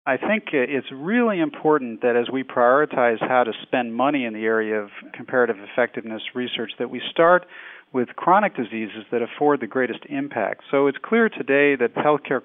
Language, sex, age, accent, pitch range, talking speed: English, male, 40-59, American, 115-140 Hz, 180 wpm